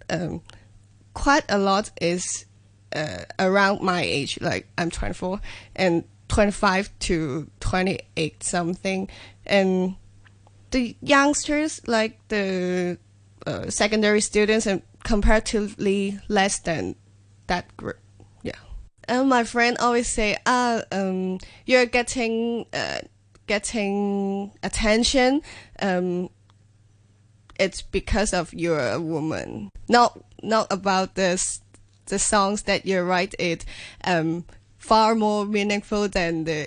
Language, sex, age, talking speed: English, female, 10-29, 110 wpm